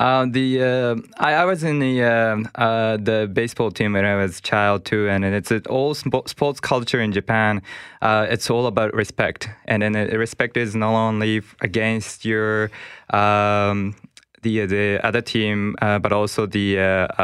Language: English